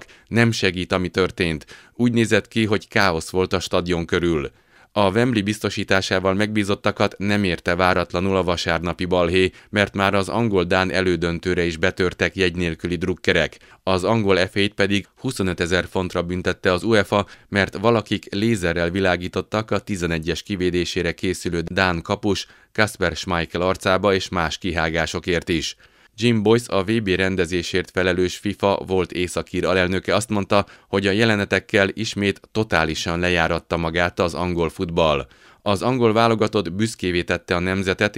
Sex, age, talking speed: male, 30-49, 140 wpm